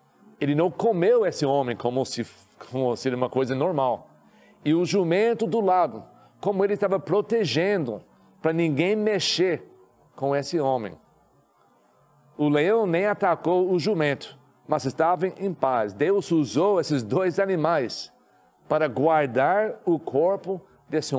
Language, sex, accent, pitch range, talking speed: Portuguese, male, Brazilian, 120-160 Hz, 135 wpm